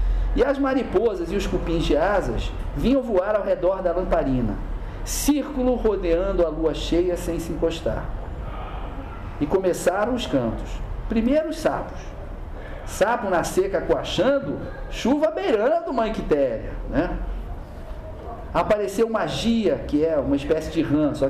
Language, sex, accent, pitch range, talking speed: Portuguese, male, Brazilian, 130-210 Hz, 130 wpm